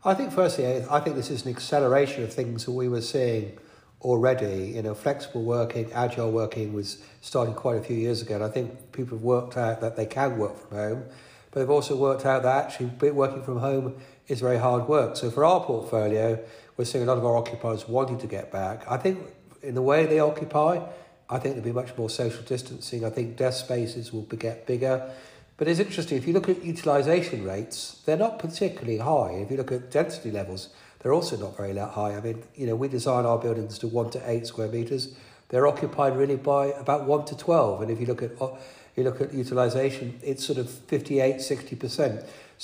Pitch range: 115-140 Hz